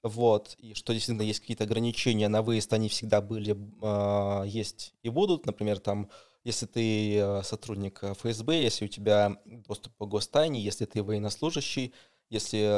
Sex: male